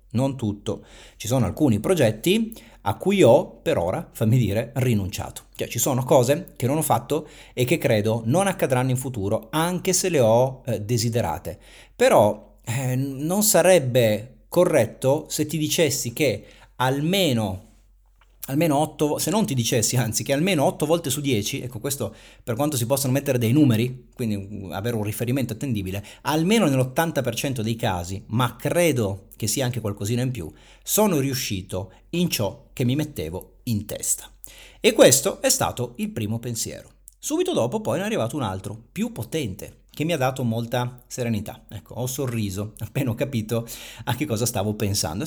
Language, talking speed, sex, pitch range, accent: Italian, 165 wpm, male, 110-140 Hz, native